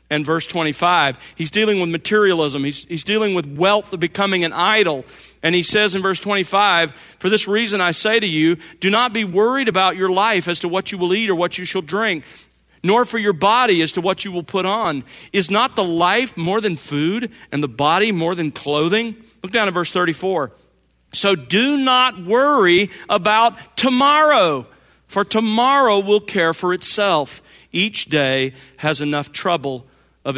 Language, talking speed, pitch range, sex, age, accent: English, 185 wpm, 160-215 Hz, male, 40-59, American